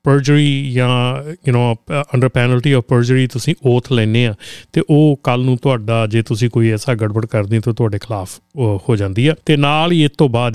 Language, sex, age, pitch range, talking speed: Punjabi, male, 30-49, 115-145 Hz, 195 wpm